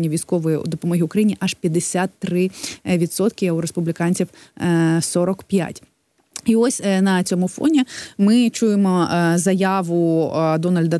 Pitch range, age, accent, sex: 170-200 Hz, 20-39, native, female